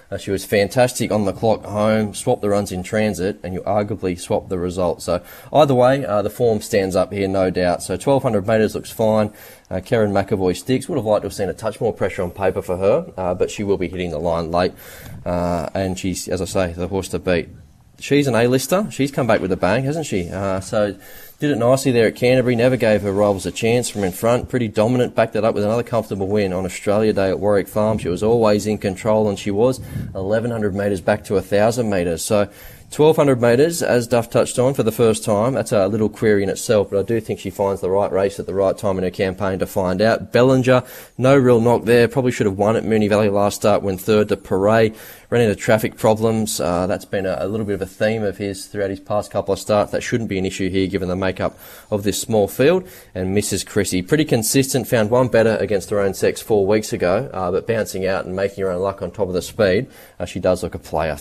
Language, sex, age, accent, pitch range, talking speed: English, male, 20-39, Australian, 95-115 Hz, 250 wpm